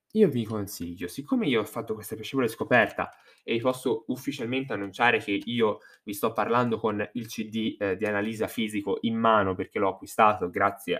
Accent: native